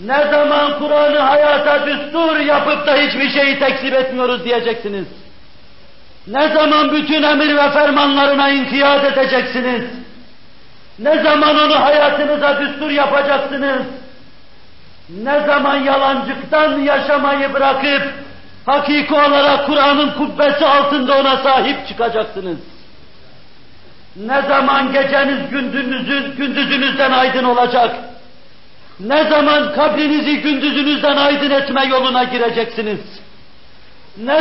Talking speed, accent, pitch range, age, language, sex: 95 wpm, native, 245-290 Hz, 50-69, Turkish, male